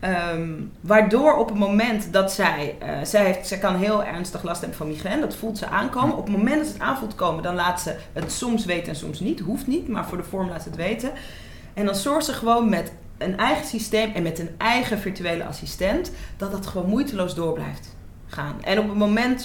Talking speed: 225 wpm